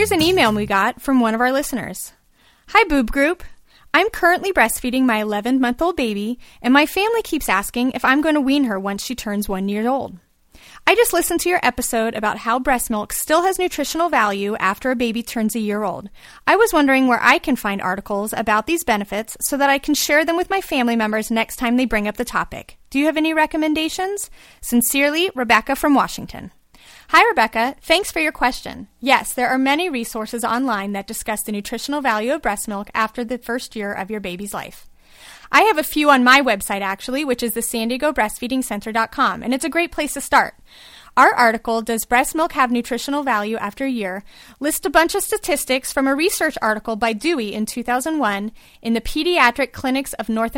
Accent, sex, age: American, female, 30-49